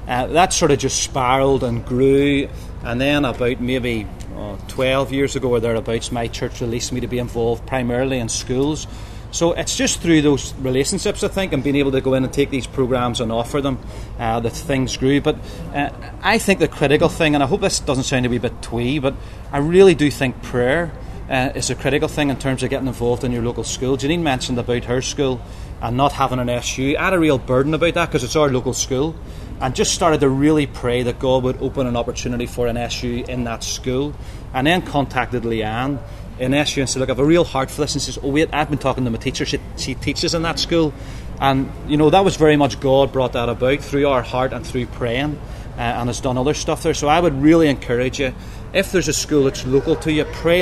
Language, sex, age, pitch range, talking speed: English, male, 30-49, 120-145 Hz, 240 wpm